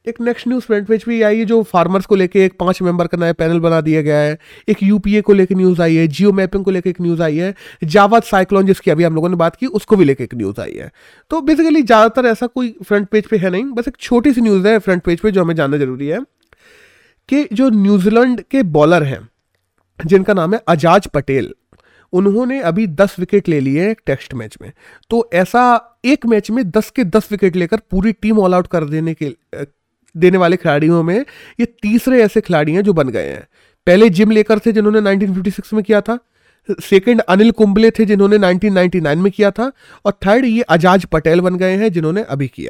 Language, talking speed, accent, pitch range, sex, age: Hindi, 205 wpm, native, 170-225 Hz, male, 30-49